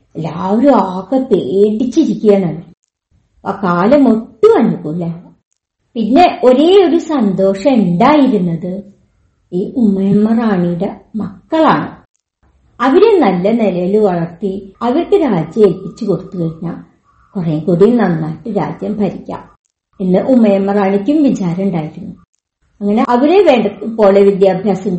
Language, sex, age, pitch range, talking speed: Malayalam, male, 50-69, 195-260 Hz, 85 wpm